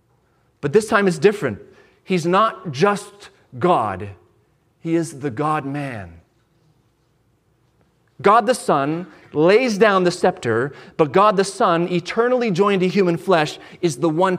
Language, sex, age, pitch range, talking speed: English, male, 30-49, 125-200 Hz, 135 wpm